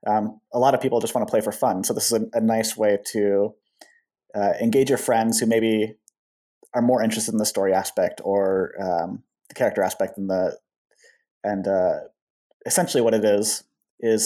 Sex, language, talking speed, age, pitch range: male, English, 195 wpm, 30-49, 105-120 Hz